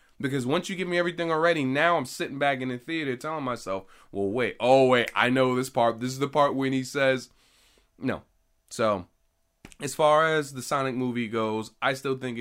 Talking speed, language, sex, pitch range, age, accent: 210 wpm, English, male, 110-145 Hz, 20-39, American